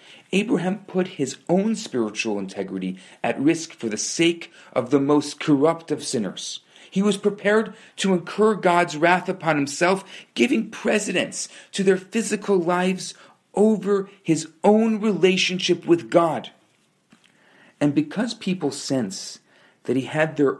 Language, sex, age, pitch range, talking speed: English, male, 40-59, 125-180 Hz, 135 wpm